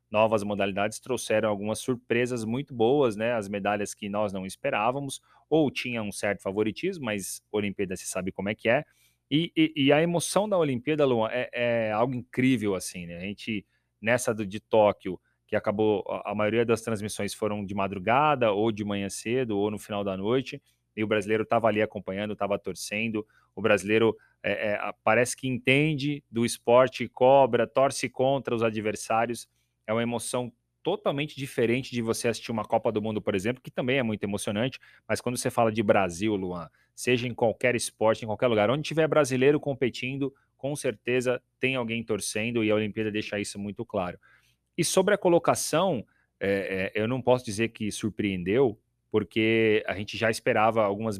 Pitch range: 105-125 Hz